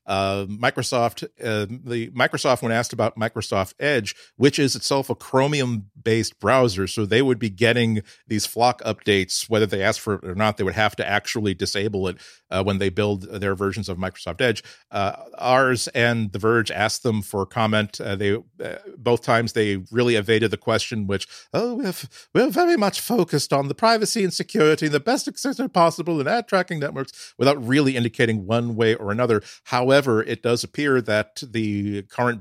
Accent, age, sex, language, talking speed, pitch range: American, 50-69, male, English, 190 wpm, 100-125 Hz